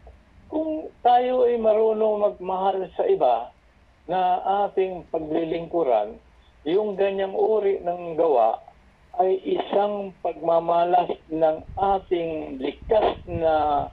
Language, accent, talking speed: English, Filipino, 95 wpm